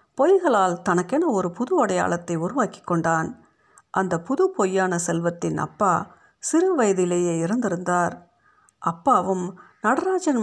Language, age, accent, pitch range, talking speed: Tamil, 50-69, native, 170-215 Hz, 100 wpm